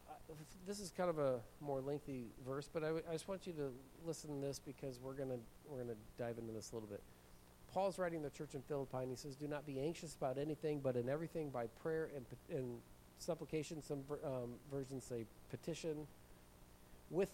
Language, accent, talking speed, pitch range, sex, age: English, American, 210 wpm, 125-165 Hz, male, 40-59